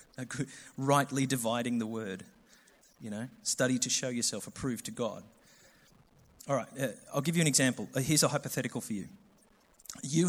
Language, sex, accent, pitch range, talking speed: English, male, Australian, 130-195 Hz, 145 wpm